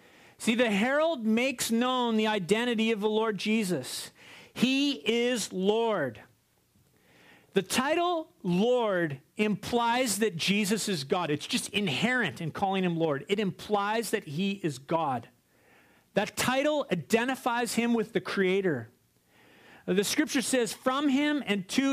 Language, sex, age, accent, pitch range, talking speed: English, male, 40-59, American, 185-235 Hz, 135 wpm